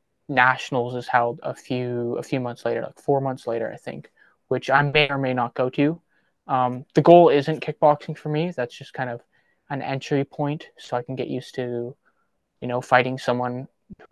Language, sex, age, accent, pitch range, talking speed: English, male, 20-39, American, 125-145 Hz, 205 wpm